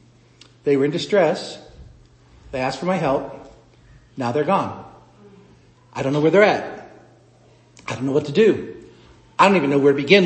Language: English